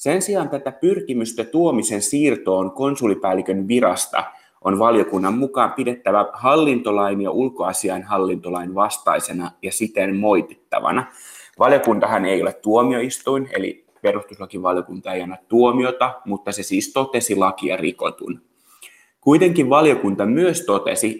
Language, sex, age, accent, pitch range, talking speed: Finnish, male, 30-49, native, 100-130 Hz, 110 wpm